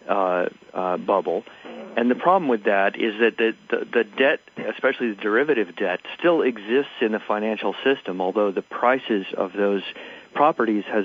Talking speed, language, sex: 165 wpm, English, male